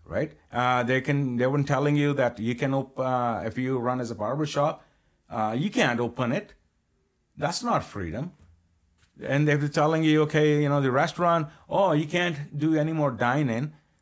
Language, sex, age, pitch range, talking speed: English, male, 50-69, 100-145 Hz, 190 wpm